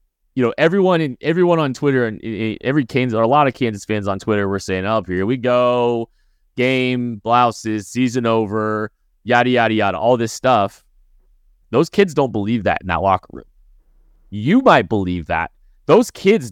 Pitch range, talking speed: 100-140 Hz, 180 wpm